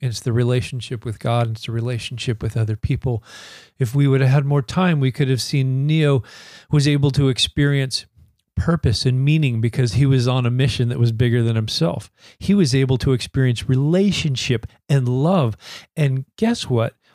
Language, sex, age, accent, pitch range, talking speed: English, male, 40-59, American, 115-145 Hz, 185 wpm